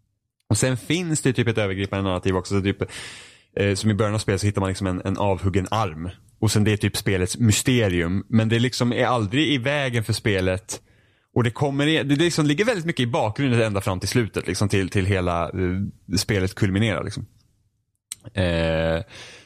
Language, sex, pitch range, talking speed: Swedish, male, 105-145 Hz, 195 wpm